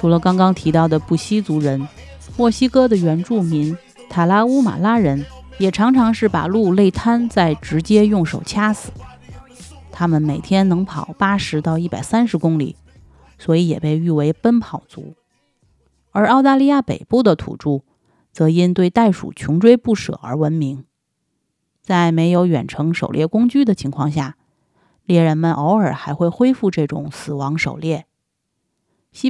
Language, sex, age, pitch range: Chinese, female, 30-49, 155-210 Hz